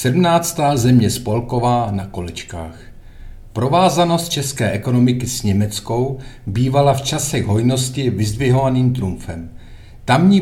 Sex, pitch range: male, 105-140 Hz